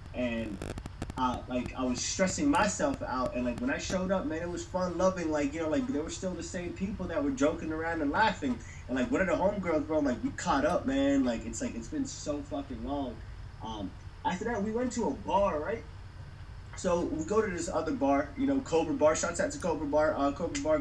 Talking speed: 240 wpm